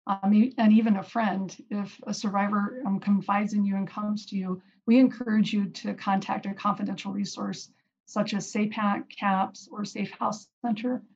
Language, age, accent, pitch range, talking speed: English, 40-59, American, 195-215 Hz, 170 wpm